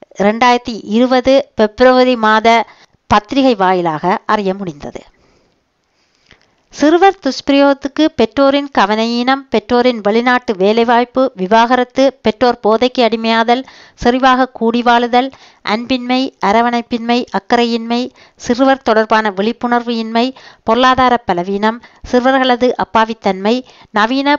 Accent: native